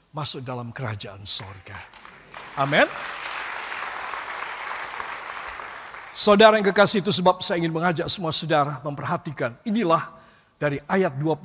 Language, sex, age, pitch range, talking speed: Indonesian, male, 50-69, 150-240 Hz, 100 wpm